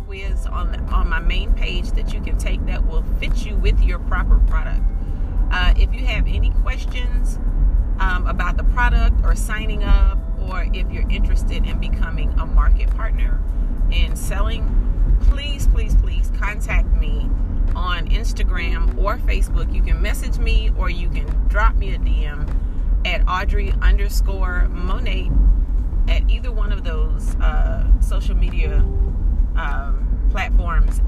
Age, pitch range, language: 40-59, 70-85 Hz, English